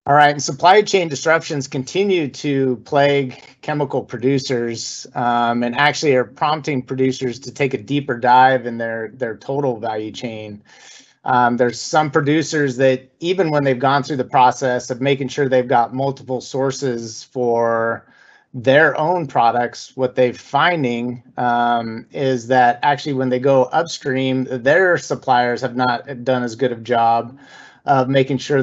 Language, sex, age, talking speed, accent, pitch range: English, male, 30-49, 155 wpm, American, 120-140 Hz